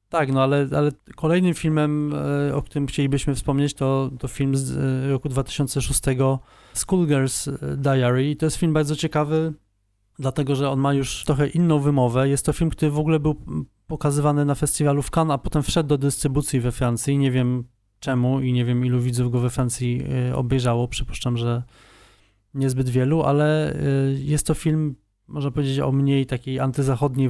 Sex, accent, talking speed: male, native, 165 wpm